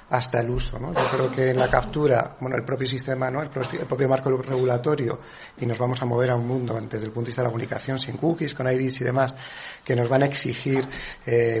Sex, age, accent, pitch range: male, 40-59, Spanish, 125-145 Hz